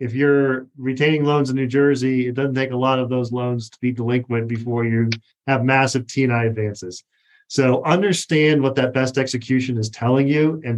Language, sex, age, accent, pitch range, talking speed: English, male, 40-59, American, 125-155 Hz, 190 wpm